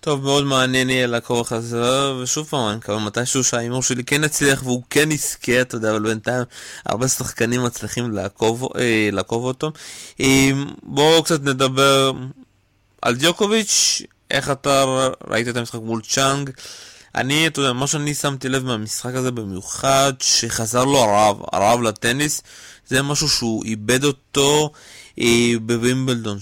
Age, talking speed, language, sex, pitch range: 20-39, 140 wpm, Hebrew, male, 115-135 Hz